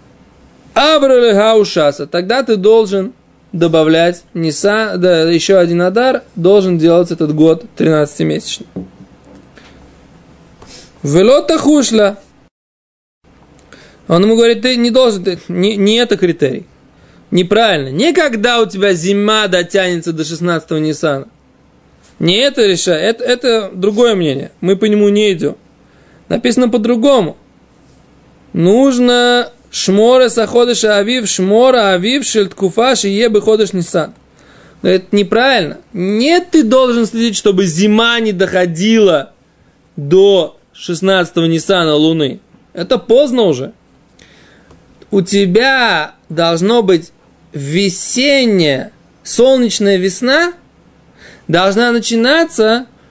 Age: 20-39